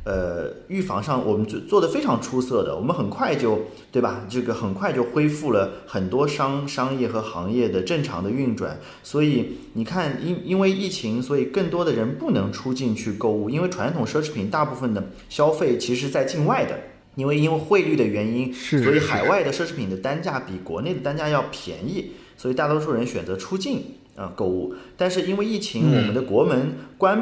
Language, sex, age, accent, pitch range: Chinese, male, 30-49, native, 120-175 Hz